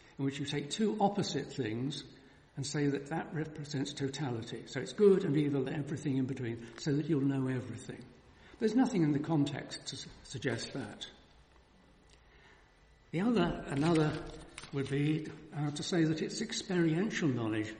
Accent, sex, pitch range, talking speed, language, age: British, male, 125-155 Hz, 155 wpm, English, 60-79